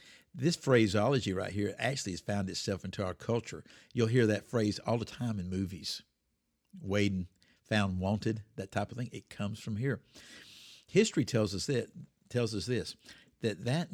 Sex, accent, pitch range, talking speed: male, American, 100-125 Hz, 165 wpm